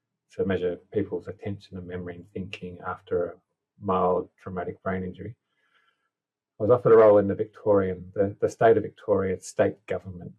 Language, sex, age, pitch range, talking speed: English, male, 30-49, 90-115 Hz, 170 wpm